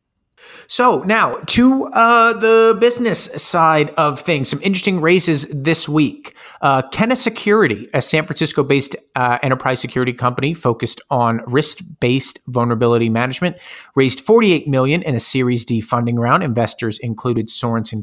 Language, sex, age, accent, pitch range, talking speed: English, male, 40-59, American, 115-155 Hz, 135 wpm